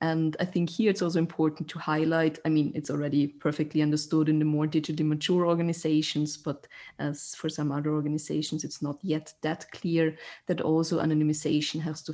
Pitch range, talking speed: 145-160 Hz, 175 wpm